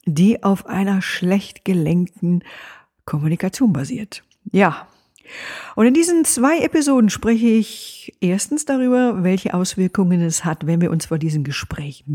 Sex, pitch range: female, 165-225 Hz